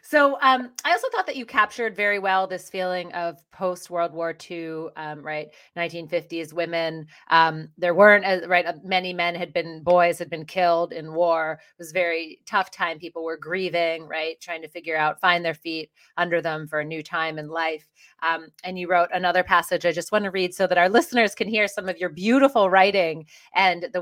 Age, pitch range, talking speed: 30-49, 170-210 Hz, 210 wpm